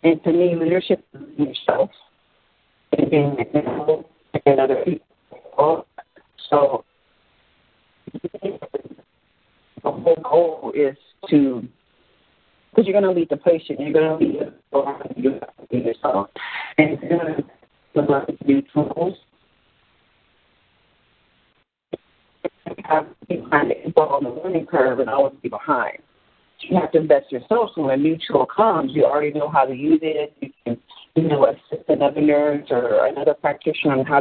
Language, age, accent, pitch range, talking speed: English, 50-69, American, 140-165 Hz, 155 wpm